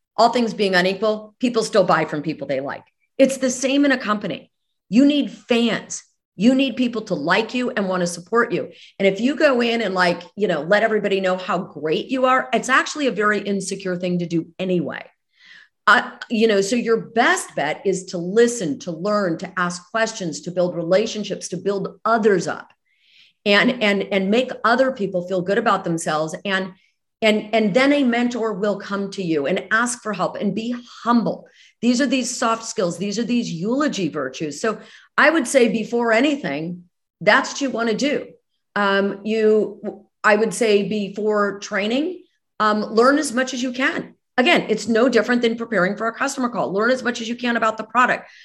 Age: 40-59